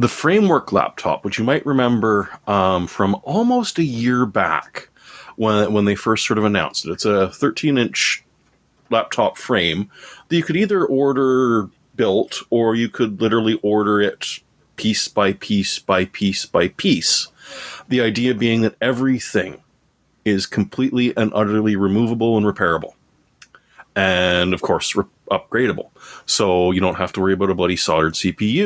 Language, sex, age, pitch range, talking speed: English, male, 30-49, 100-140 Hz, 150 wpm